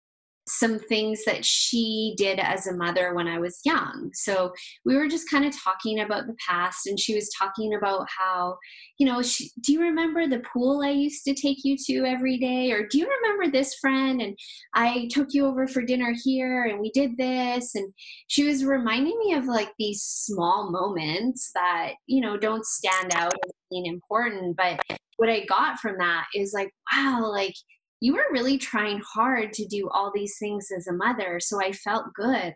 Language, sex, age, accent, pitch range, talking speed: English, female, 10-29, American, 185-255 Hz, 195 wpm